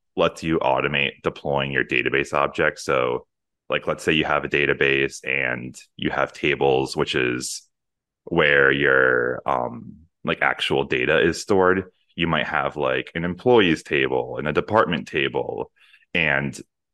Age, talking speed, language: 20-39, 145 wpm, English